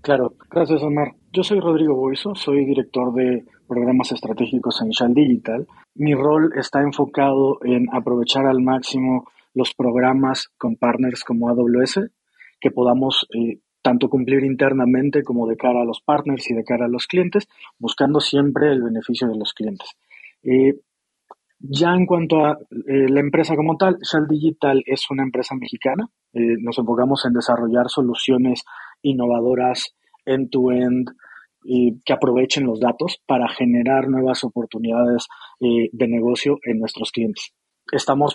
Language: Spanish